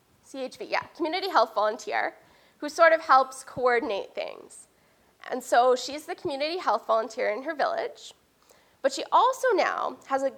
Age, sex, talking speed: 10-29, female, 155 wpm